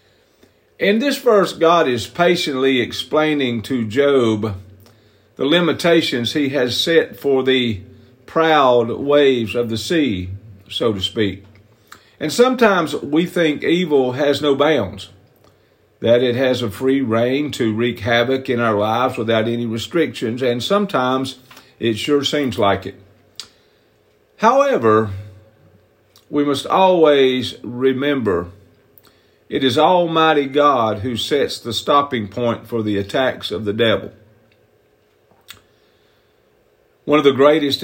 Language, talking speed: English, 125 wpm